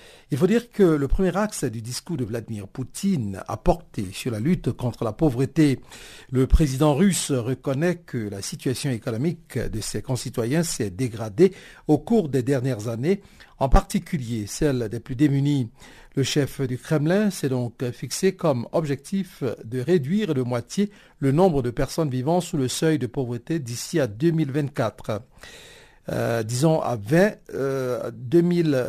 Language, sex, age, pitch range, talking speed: French, male, 60-79, 125-175 Hz, 160 wpm